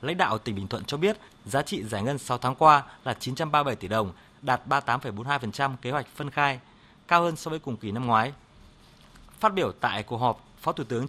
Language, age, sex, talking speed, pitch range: Vietnamese, 20-39, male, 215 wpm, 120-160 Hz